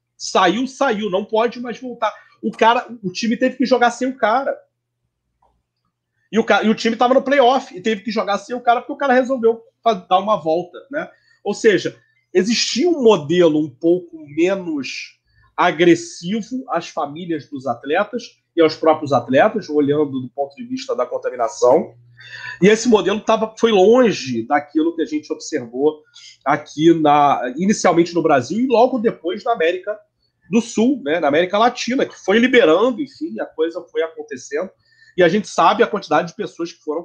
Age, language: 30-49, Portuguese